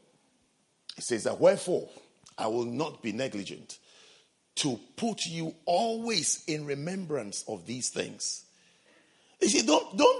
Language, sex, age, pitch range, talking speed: English, male, 50-69, 140-210 Hz, 130 wpm